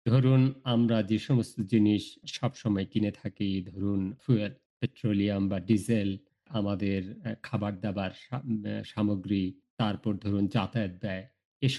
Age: 50-69